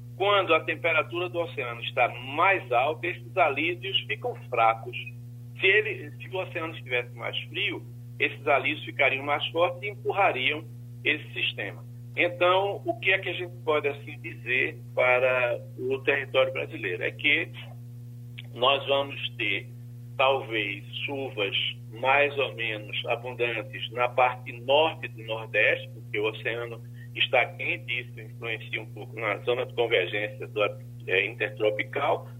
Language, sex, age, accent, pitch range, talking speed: Portuguese, male, 50-69, Brazilian, 120-135 Hz, 140 wpm